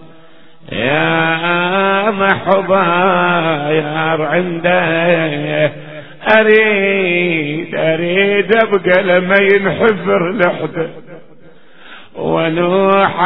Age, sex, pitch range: 50-69, male, 165-195 Hz